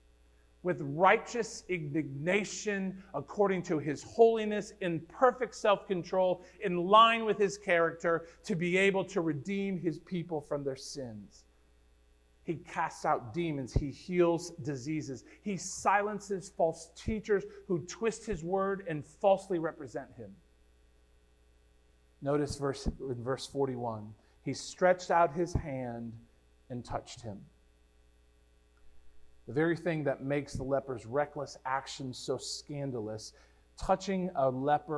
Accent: American